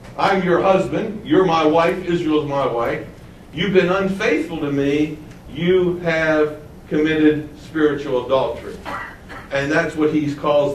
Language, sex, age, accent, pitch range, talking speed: English, male, 60-79, American, 105-160 Hz, 135 wpm